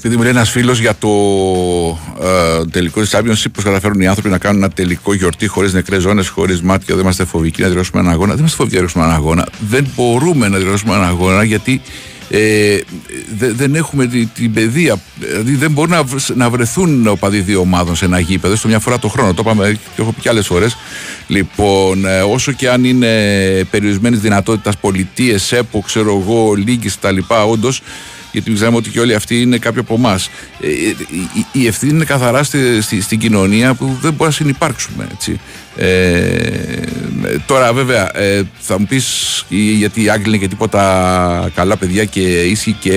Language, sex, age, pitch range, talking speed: Greek, male, 60-79, 95-125 Hz, 180 wpm